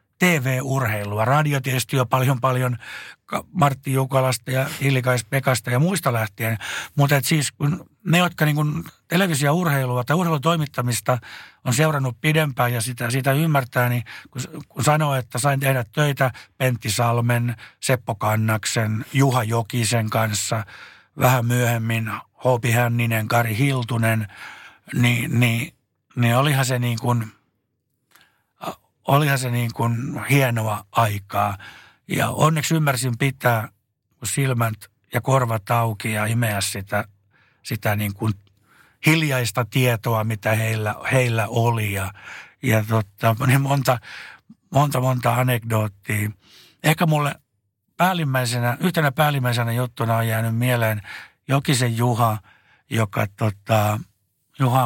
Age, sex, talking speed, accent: 60-79, male, 115 wpm, native